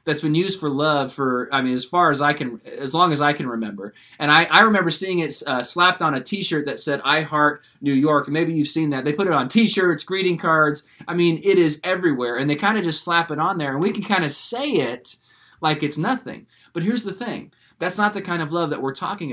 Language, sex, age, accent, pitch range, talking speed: English, male, 20-39, American, 140-175 Hz, 260 wpm